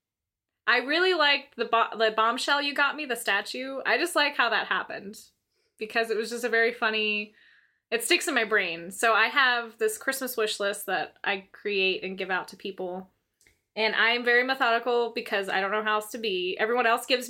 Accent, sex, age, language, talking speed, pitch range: American, female, 20-39, English, 210 wpm, 205-275 Hz